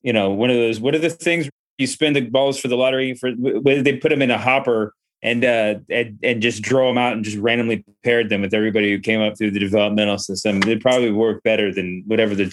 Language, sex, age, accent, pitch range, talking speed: English, male, 30-49, American, 110-135 Hz, 255 wpm